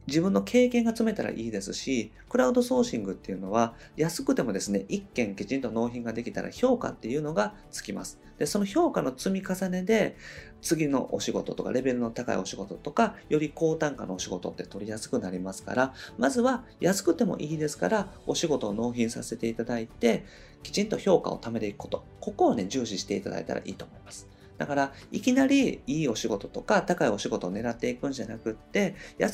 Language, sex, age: Japanese, male, 40-59